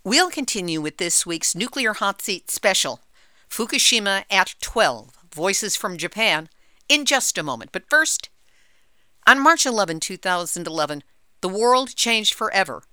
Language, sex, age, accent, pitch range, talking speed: English, female, 50-69, American, 175-230 Hz, 135 wpm